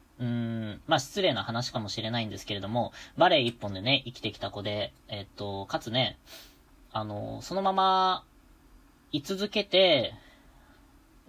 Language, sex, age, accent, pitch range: Japanese, female, 20-39, native, 110-145 Hz